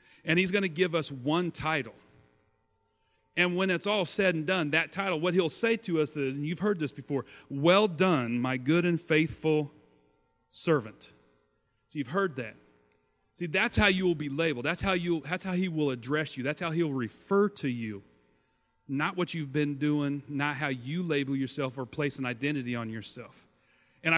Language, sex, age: English, male, 40-59